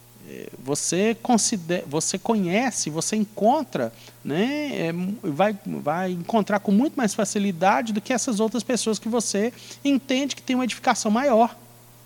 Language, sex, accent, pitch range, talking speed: Portuguese, male, Brazilian, 145-225 Hz, 140 wpm